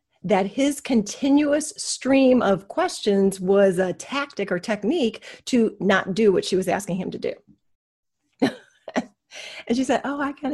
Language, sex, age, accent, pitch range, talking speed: English, female, 40-59, American, 170-250 Hz, 155 wpm